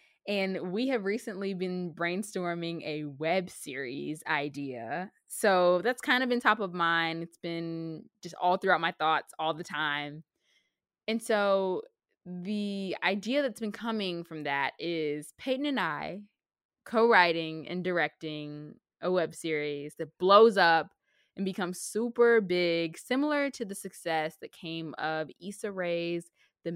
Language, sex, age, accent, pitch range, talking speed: English, female, 20-39, American, 160-195 Hz, 145 wpm